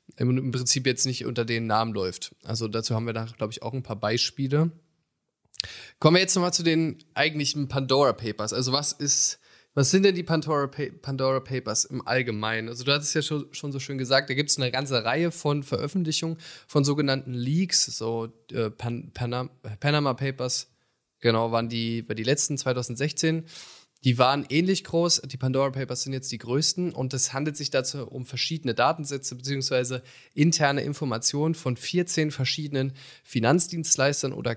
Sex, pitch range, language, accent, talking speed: male, 125-155 Hz, German, German, 175 wpm